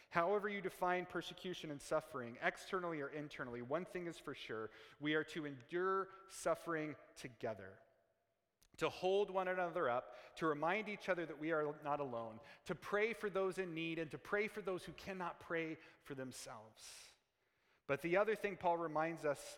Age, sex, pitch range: 30-49, male, 145-190 Hz